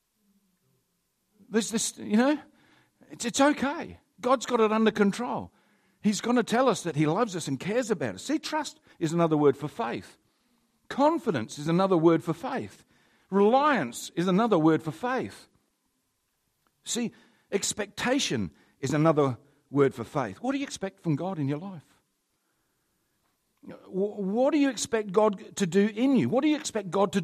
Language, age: English, 50-69